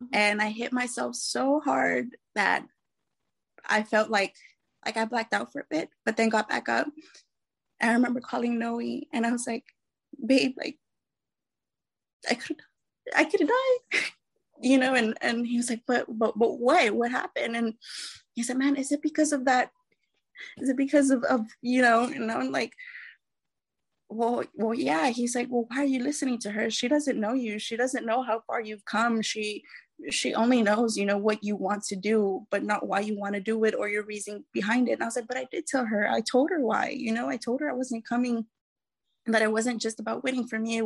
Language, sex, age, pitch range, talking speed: English, female, 20-39, 220-260 Hz, 215 wpm